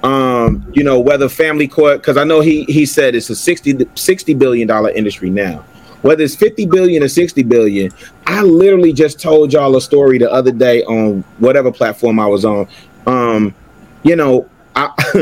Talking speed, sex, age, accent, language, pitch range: 180 wpm, male, 30-49, American, English, 125-170 Hz